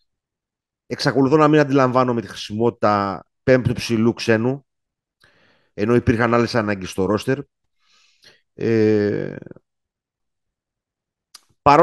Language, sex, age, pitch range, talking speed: Greek, male, 30-49, 100-130 Hz, 90 wpm